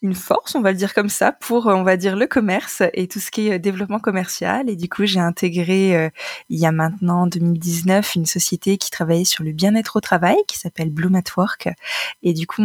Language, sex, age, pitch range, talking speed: French, female, 20-39, 175-205 Hz, 230 wpm